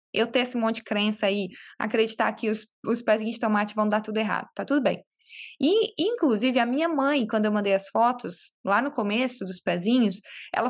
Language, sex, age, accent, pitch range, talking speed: Portuguese, female, 20-39, Brazilian, 215-280 Hz, 210 wpm